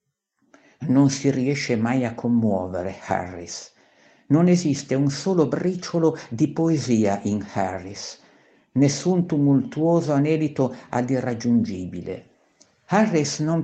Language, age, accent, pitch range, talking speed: Italian, 50-69, native, 115-150 Hz, 95 wpm